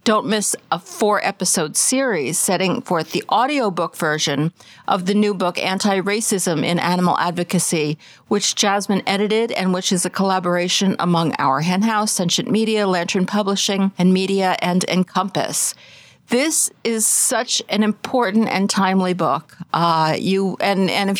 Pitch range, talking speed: 180-215 Hz, 145 wpm